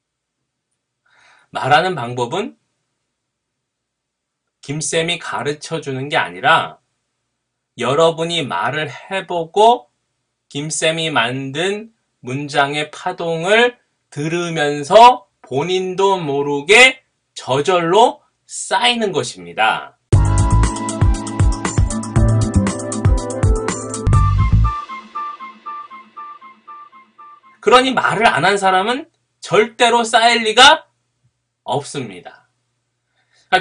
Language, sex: Korean, male